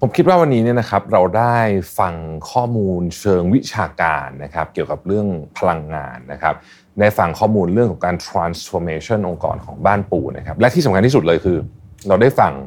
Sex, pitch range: male, 85-120 Hz